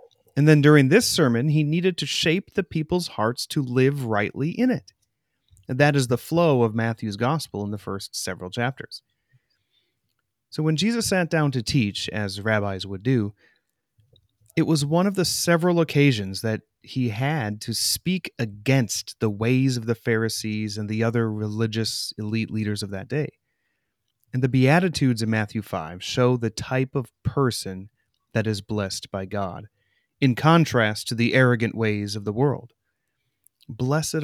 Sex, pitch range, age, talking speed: male, 110-145 Hz, 30-49, 165 wpm